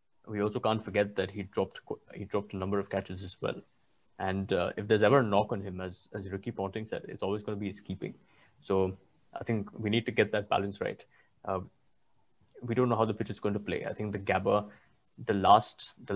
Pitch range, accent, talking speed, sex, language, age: 100-115 Hz, Indian, 240 wpm, male, English, 20-39